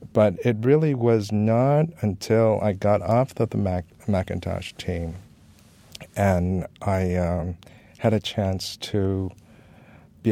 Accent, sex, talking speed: American, male, 120 wpm